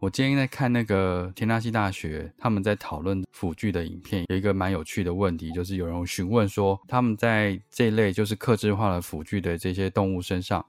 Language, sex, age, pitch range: Chinese, male, 20-39, 95-115 Hz